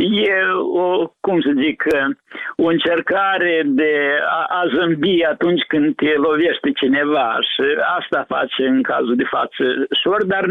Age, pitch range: 60-79, 155-235 Hz